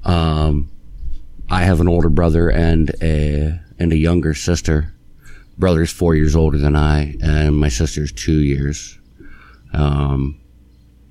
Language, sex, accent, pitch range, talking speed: English, male, American, 75-85 Hz, 130 wpm